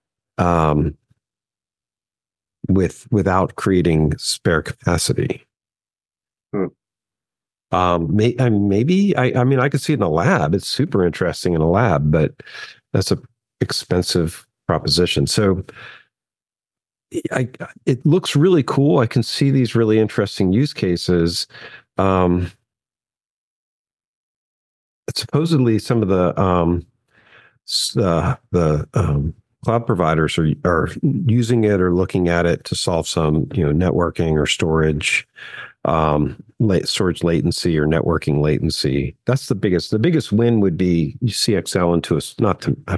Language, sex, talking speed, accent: English, male, 130 wpm, American